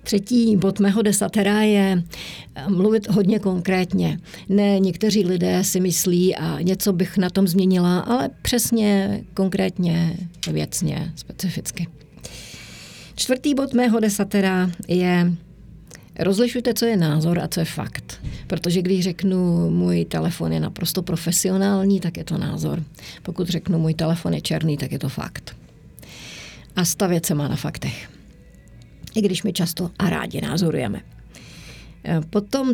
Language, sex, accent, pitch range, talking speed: Czech, female, native, 165-205 Hz, 135 wpm